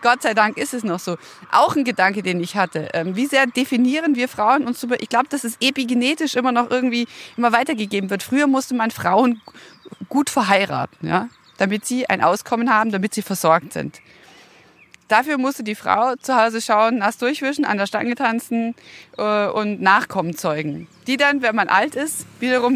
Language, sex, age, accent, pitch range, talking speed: German, female, 30-49, German, 210-265 Hz, 180 wpm